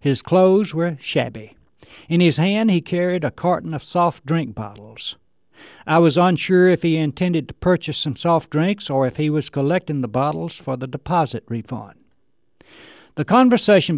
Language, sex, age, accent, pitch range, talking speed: English, male, 60-79, American, 125-175 Hz, 170 wpm